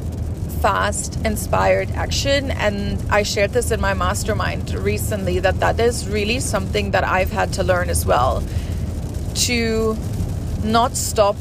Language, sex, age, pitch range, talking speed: English, female, 30-49, 90-100 Hz, 135 wpm